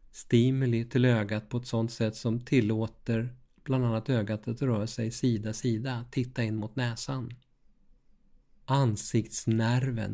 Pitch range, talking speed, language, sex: 115-130 Hz, 130 wpm, Swedish, male